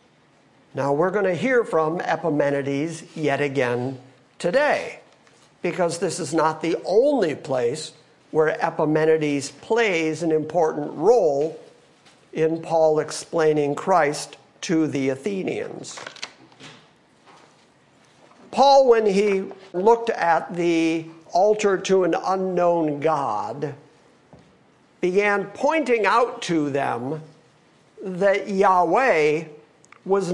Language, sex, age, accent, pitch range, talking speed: English, male, 50-69, American, 155-200 Hz, 95 wpm